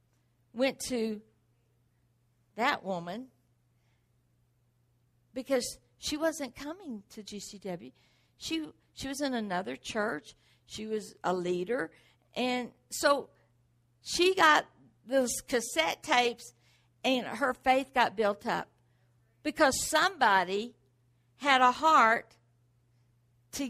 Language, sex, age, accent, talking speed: English, female, 60-79, American, 100 wpm